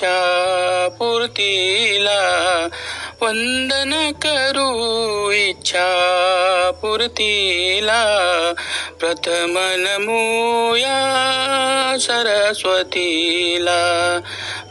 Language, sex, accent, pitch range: Marathi, male, native, 195-255 Hz